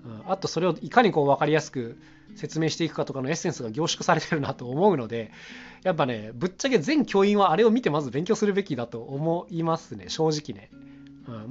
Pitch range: 130-185 Hz